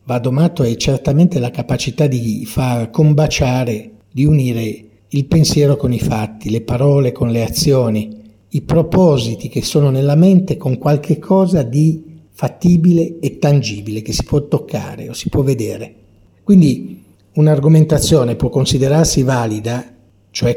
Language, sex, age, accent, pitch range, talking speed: Italian, male, 50-69, native, 115-160 Hz, 140 wpm